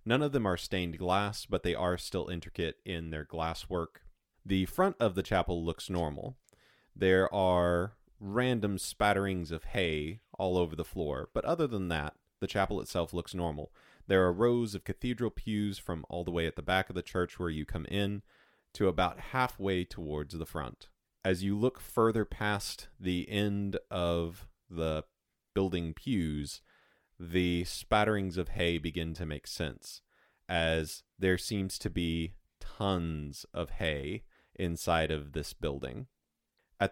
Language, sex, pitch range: English, male, 85-105 Hz